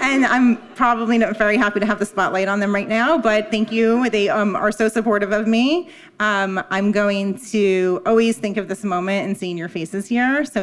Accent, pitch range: American, 195-230 Hz